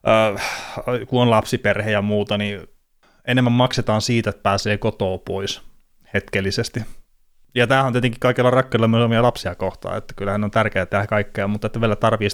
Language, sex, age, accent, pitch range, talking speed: Finnish, male, 30-49, native, 100-120 Hz, 170 wpm